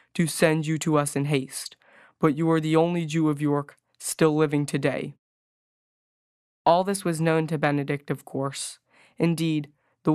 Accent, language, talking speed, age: American, English, 165 wpm, 20-39